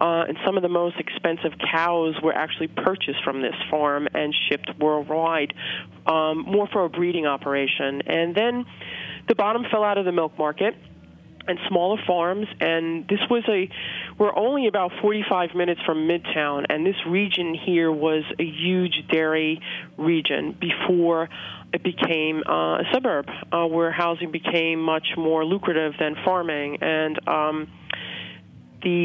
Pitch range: 155-180 Hz